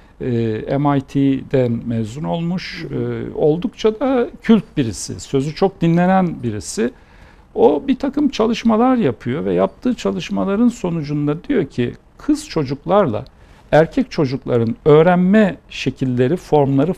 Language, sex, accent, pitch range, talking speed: Turkish, male, native, 125-180 Hz, 105 wpm